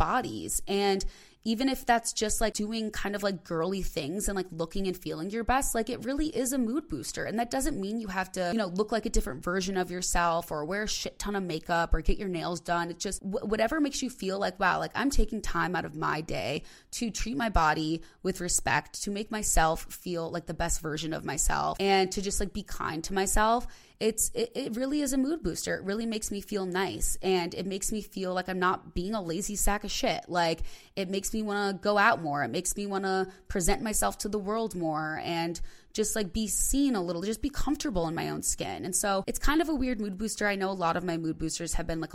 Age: 20-39